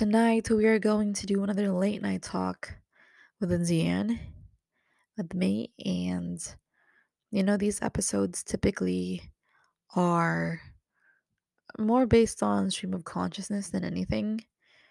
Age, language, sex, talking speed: 20-39, English, female, 115 wpm